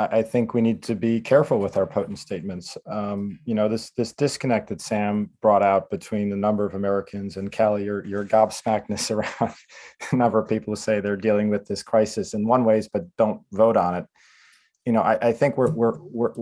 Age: 40-59